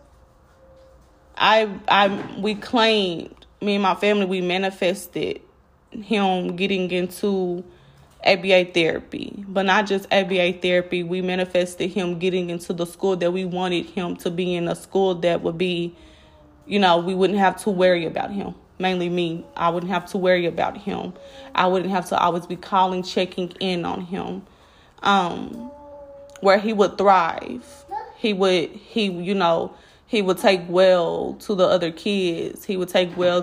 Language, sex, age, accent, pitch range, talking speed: English, female, 20-39, American, 175-205 Hz, 160 wpm